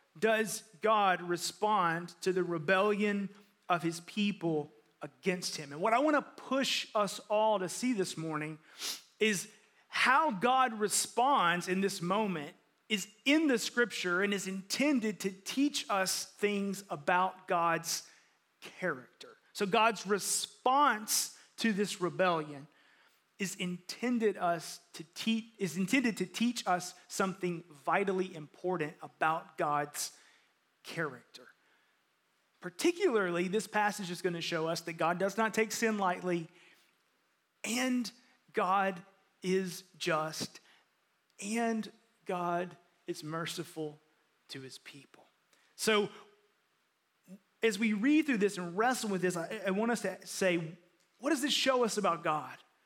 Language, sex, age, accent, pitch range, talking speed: English, male, 30-49, American, 175-220 Hz, 130 wpm